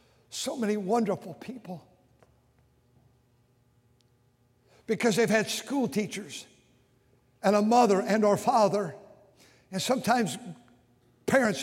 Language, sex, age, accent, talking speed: English, male, 60-79, American, 95 wpm